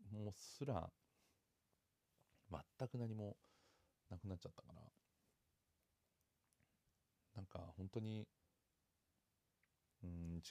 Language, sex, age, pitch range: Japanese, male, 40-59, 80-100 Hz